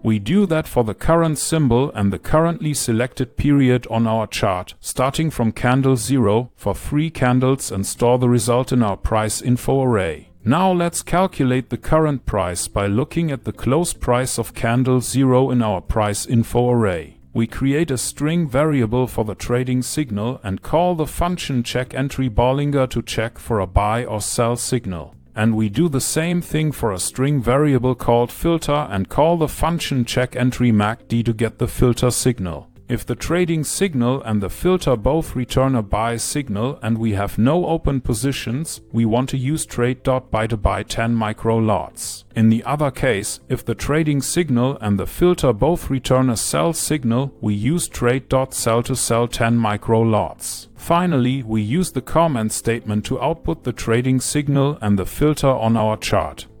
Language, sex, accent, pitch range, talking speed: English, male, German, 110-140 Hz, 180 wpm